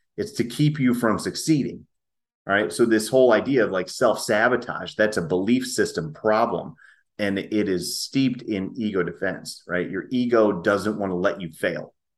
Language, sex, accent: English, male, American